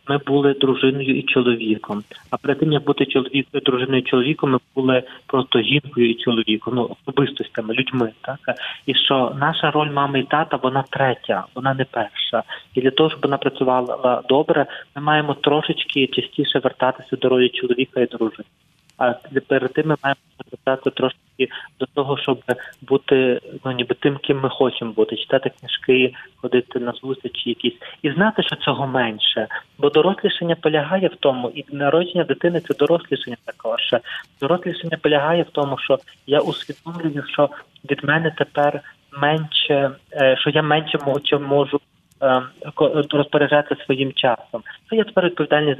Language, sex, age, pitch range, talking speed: Ukrainian, male, 20-39, 130-150 Hz, 150 wpm